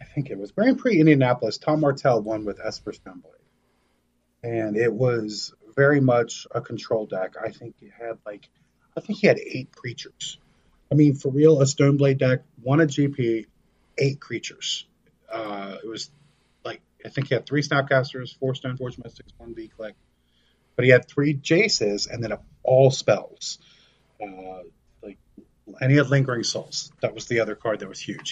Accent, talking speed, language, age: American, 175 wpm, English, 30-49